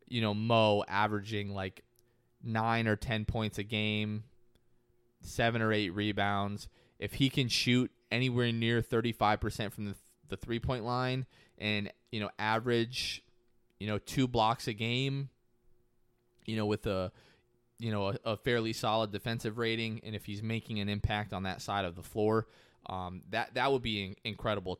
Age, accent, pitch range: 20-39, American, 105-120 Hz